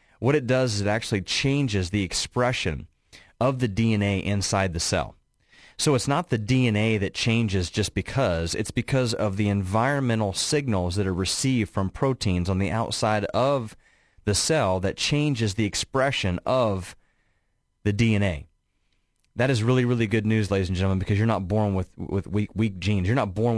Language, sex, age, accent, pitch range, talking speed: English, male, 30-49, American, 95-120 Hz, 175 wpm